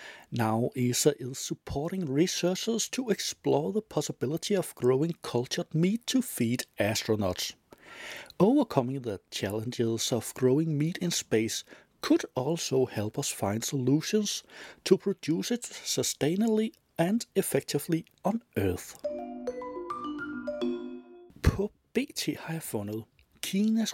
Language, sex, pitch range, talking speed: Danish, male, 120-185 Hz, 110 wpm